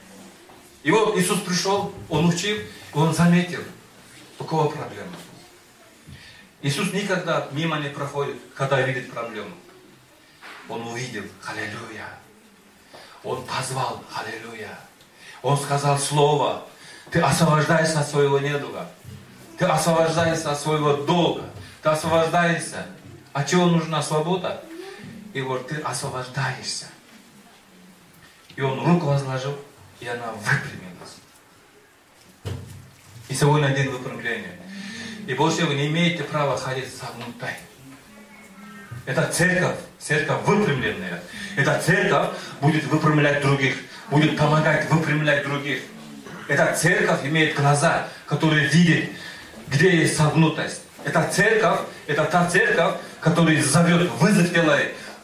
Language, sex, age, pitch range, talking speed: Russian, male, 40-59, 140-175 Hz, 105 wpm